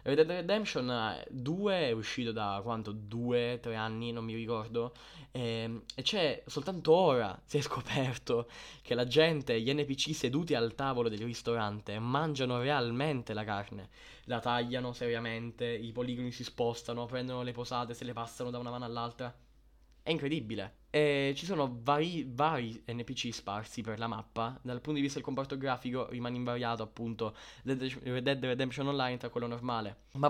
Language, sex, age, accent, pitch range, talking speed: Italian, male, 10-29, native, 115-140 Hz, 160 wpm